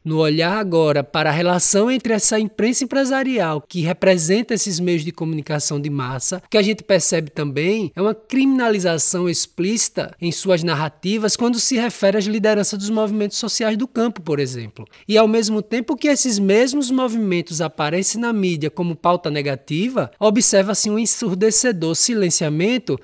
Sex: male